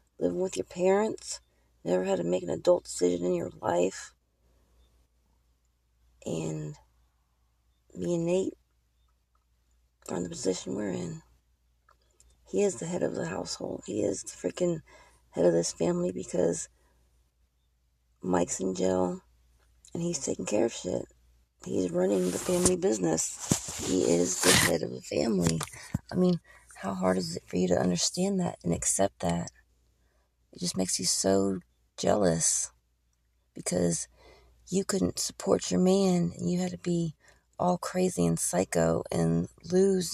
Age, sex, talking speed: 30-49, female, 145 wpm